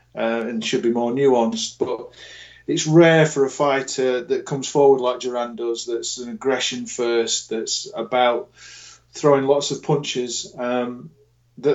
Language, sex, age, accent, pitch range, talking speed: English, male, 40-59, British, 120-140 Hz, 150 wpm